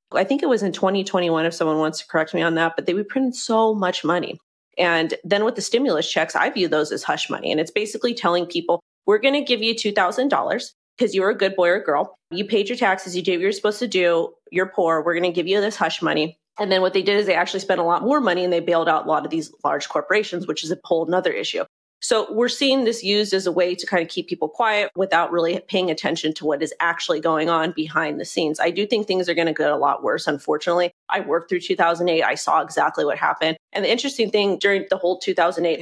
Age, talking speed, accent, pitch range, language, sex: 30-49, 265 wpm, American, 170-205 Hz, English, female